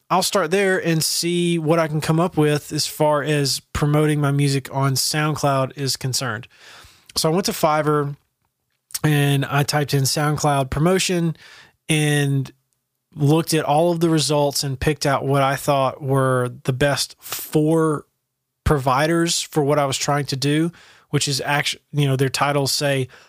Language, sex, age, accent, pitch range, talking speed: English, male, 20-39, American, 135-150 Hz, 165 wpm